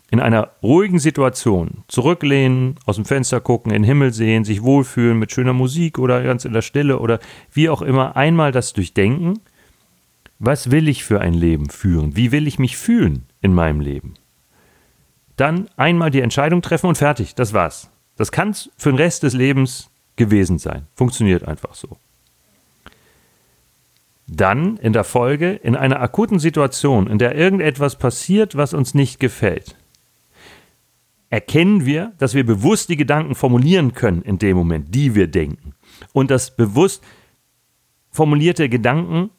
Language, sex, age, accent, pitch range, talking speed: German, male, 40-59, German, 110-150 Hz, 155 wpm